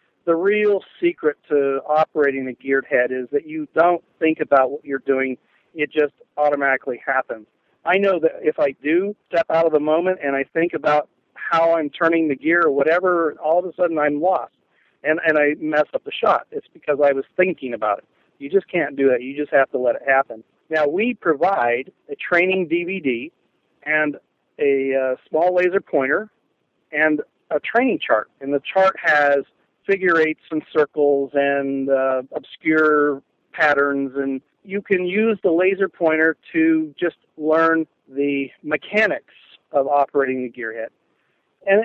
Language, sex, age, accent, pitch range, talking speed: English, male, 50-69, American, 140-175 Hz, 170 wpm